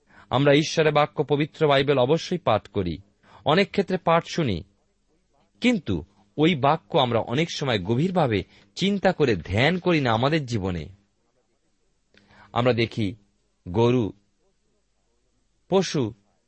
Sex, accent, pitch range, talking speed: male, native, 100-150 Hz, 60 wpm